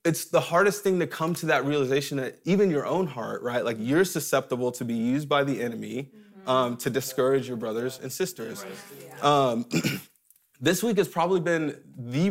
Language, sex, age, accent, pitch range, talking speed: English, male, 20-39, American, 135-170 Hz, 185 wpm